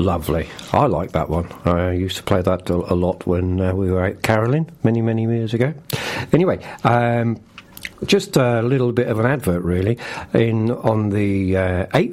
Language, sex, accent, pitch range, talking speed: English, male, British, 90-120 Hz, 180 wpm